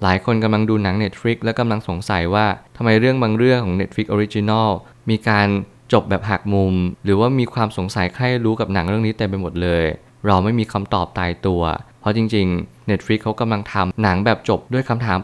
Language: Thai